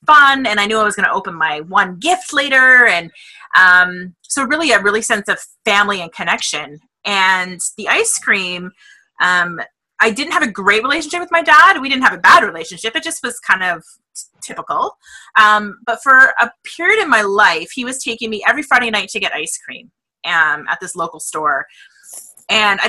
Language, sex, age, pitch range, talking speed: English, female, 30-49, 190-255 Hz, 200 wpm